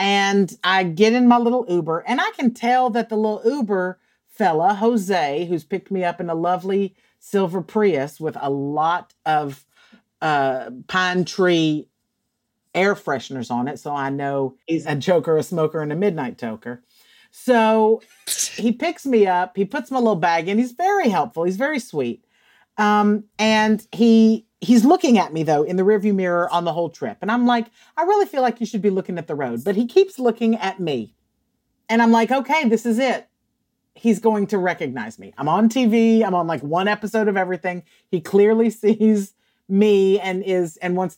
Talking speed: 190 wpm